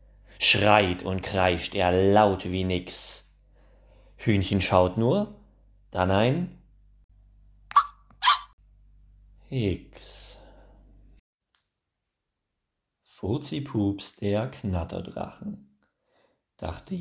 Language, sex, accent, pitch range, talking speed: German, male, German, 95-135 Hz, 60 wpm